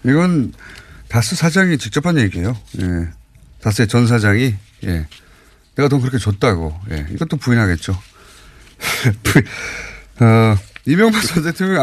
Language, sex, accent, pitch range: Korean, male, native, 95-140 Hz